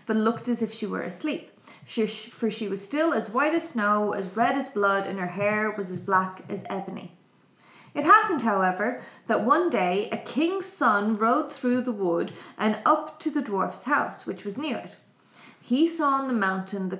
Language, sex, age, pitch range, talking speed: English, female, 20-39, 200-255 Hz, 200 wpm